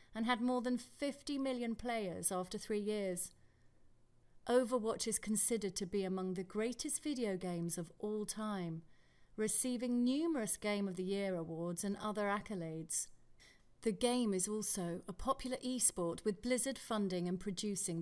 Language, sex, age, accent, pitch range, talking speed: English, female, 30-49, British, 185-235 Hz, 150 wpm